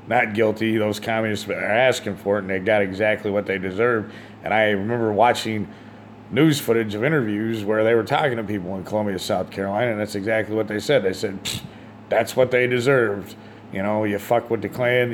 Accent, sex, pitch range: American, male, 100-110 Hz